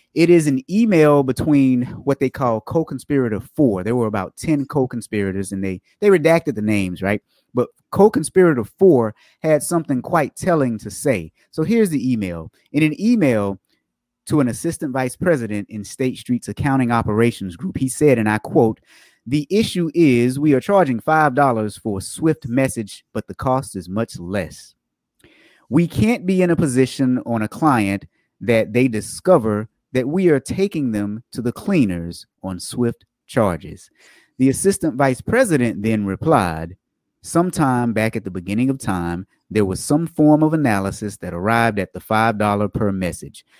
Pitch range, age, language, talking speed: 105-145 Hz, 30-49, English, 165 wpm